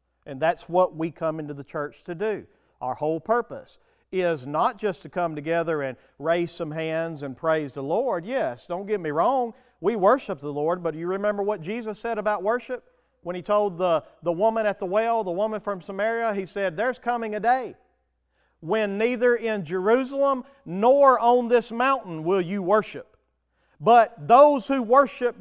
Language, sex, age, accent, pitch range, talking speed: English, male, 40-59, American, 180-250 Hz, 185 wpm